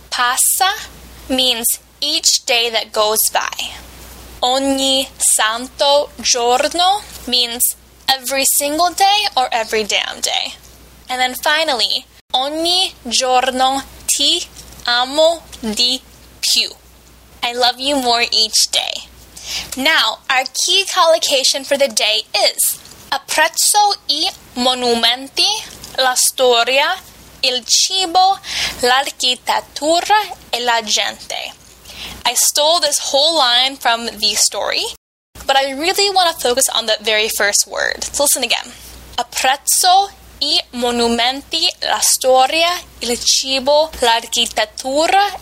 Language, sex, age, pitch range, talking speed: Italian, female, 10-29, 240-325 Hz, 110 wpm